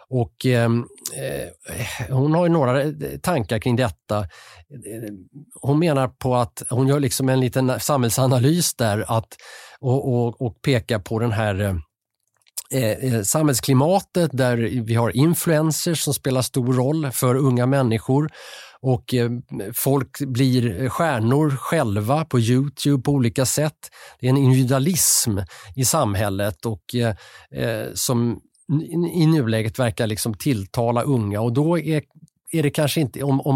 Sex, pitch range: male, 115-145 Hz